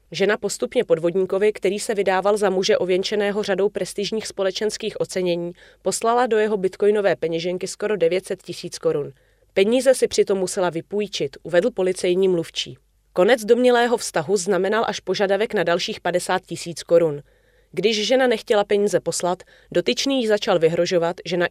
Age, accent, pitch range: 30-49, native, 170-210 Hz